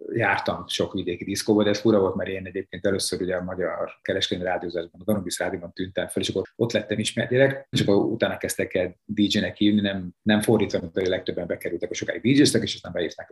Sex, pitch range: male, 95-110 Hz